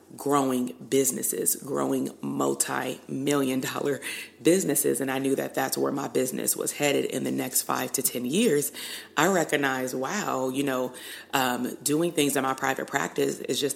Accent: American